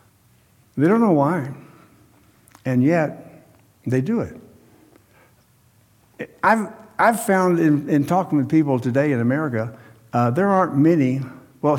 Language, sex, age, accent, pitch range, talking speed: English, male, 60-79, American, 135-190 Hz, 125 wpm